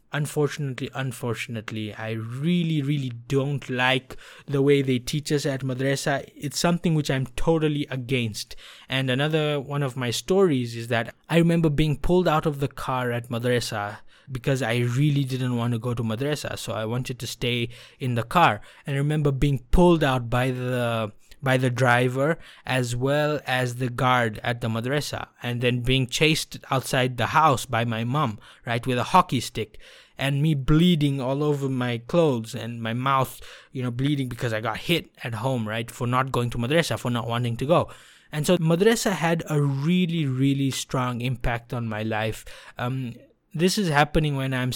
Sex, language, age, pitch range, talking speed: male, English, 20-39, 120-150 Hz, 185 wpm